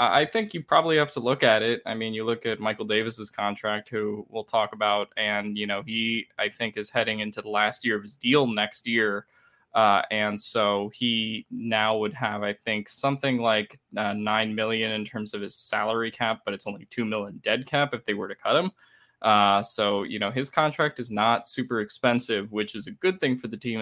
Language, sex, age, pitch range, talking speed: English, male, 20-39, 105-120 Hz, 225 wpm